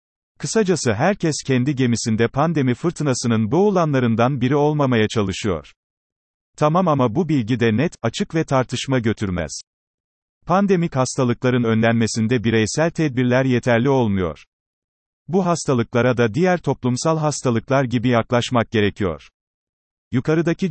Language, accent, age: Turkish, native, 40-59